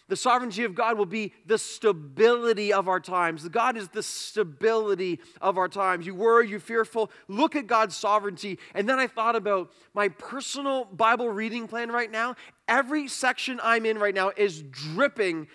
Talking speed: 180 wpm